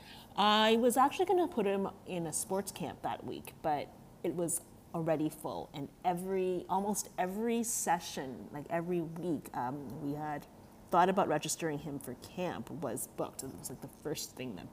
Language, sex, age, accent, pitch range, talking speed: English, female, 30-49, American, 145-190 Hz, 180 wpm